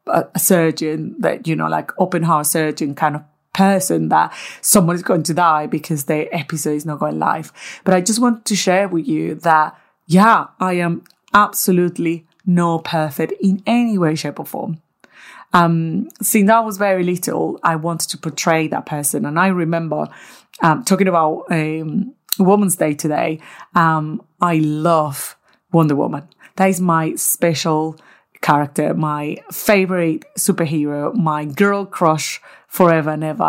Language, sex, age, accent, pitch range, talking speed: English, female, 30-49, British, 155-190 Hz, 160 wpm